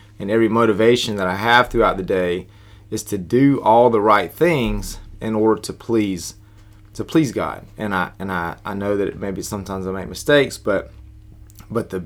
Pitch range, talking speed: 95-110 Hz, 190 wpm